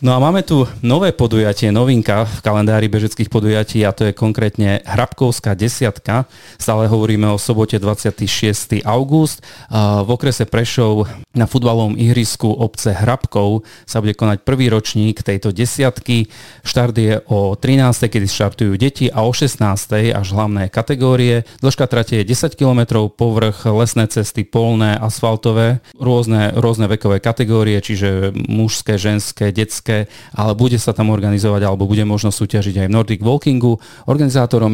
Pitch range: 105-120 Hz